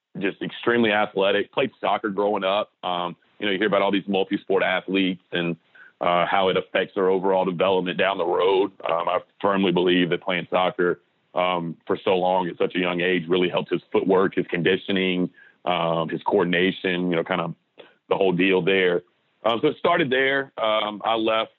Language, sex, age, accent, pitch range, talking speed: English, male, 30-49, American, 90-105 Hz, 190 wpm